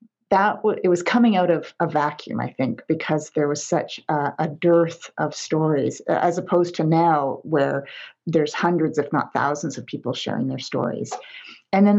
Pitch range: 150-175 Hz